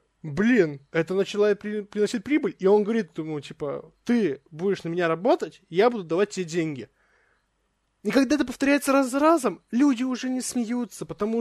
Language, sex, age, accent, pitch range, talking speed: Russian, male, 20-39, native, 165-220 Hz, 170 wpm